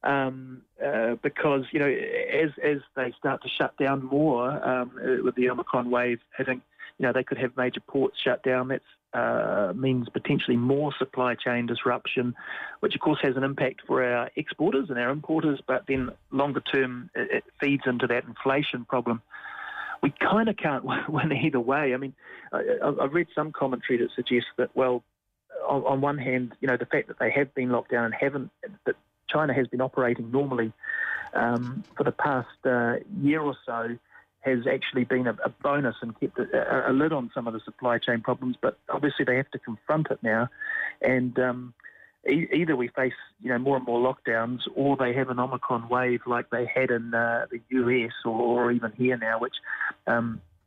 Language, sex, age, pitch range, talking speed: English, male, 30-49, 120-140 Hz, 200 wpm